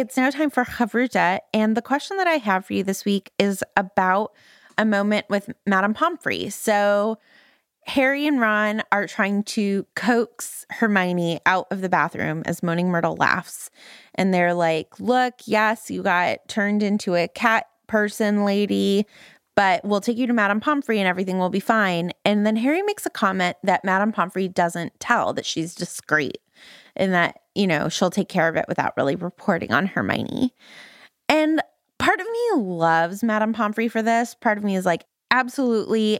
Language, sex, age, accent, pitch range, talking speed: English, female, 20-39, American, 195-265 Hz, 175 wpm